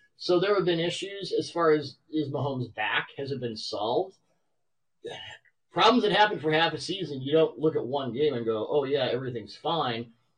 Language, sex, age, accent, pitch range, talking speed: English, male, 40-59, American, 120-155 Hz, 195 wpm